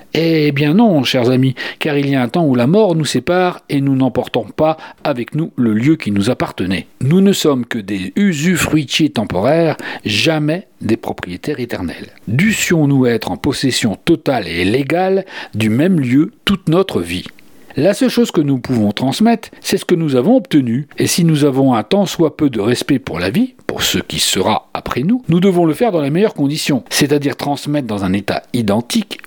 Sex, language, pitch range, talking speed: male, French, 130-195 Hz, 195 wpm